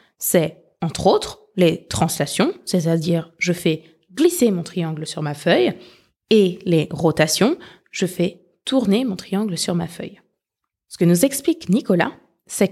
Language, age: French, 20-39